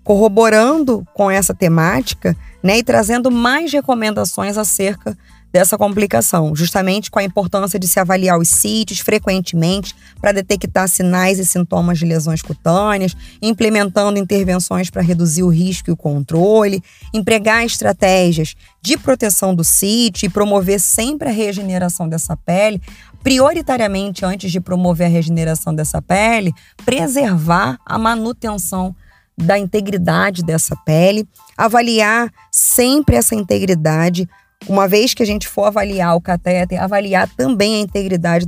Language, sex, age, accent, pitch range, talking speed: Portuguese, female, 20-39, Brazilian, 175-220 Hz, 130 wpm